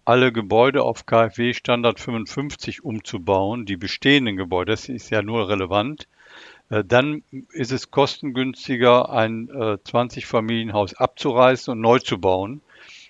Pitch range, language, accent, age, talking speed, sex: 110-135 Hz, German, German, 50-69, 120 wpm, male